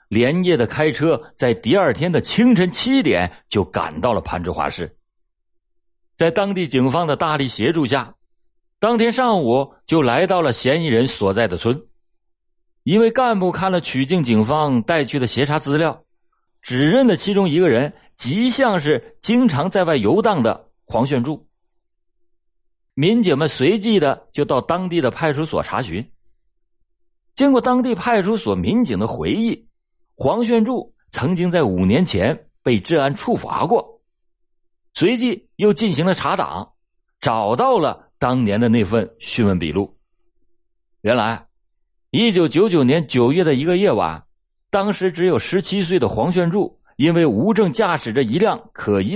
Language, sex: Chinese, male